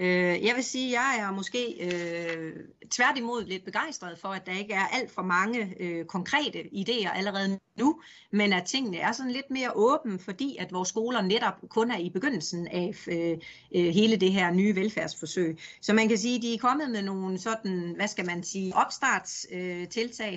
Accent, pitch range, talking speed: native, 180-230 Hz, 185 wpm